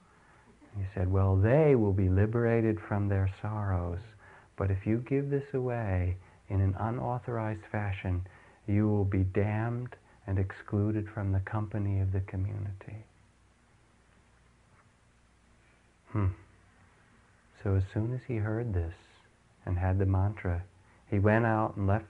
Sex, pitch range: male, 95-120 Hz